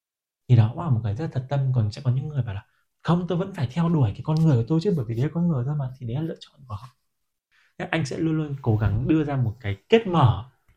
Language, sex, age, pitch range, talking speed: Vietnamese, male, 20-39, 115-145 Hz, 300 wpm